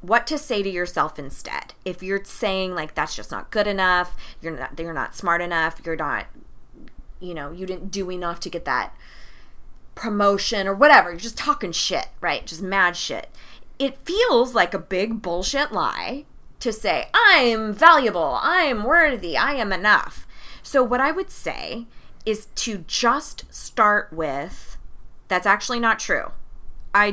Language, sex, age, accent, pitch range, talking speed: English, female, 20-39, American, 165-225 Hz, 165 wpm